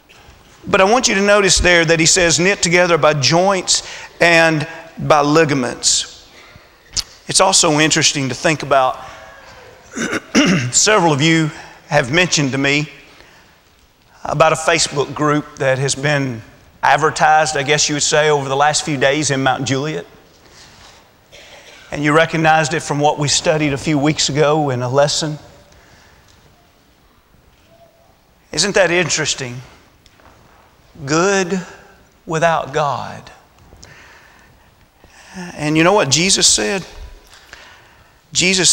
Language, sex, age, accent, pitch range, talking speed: English, male, 40-59, American, 130-165 Hz, 120 wpm